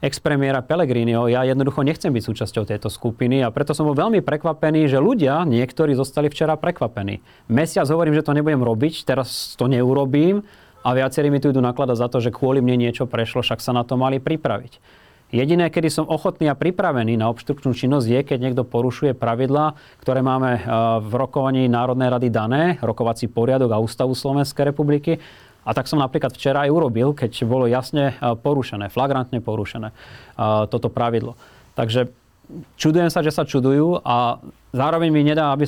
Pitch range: 120-145 Hz